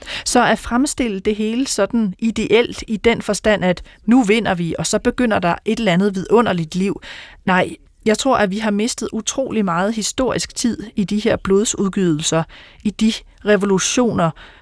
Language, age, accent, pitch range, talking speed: Danish, 30-49, native, 190-240 Hz, 170 wpm